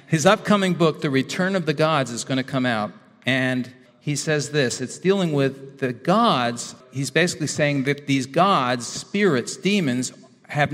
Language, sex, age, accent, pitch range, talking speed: English, male, 50-69, American, 140-175 Hz, 175 wpm